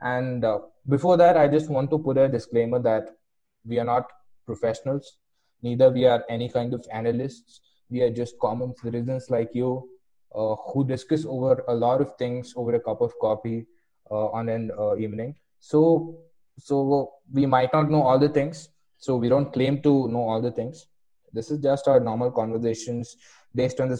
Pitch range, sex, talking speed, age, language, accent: 115-140 Hz, male, 190 wpm, 20-39, English, Indian